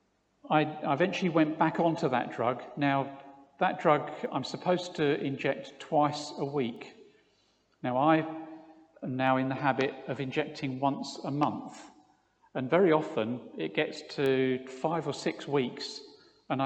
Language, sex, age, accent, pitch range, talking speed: English, male, 50-69, British, 130-160 Hz, 145 wpm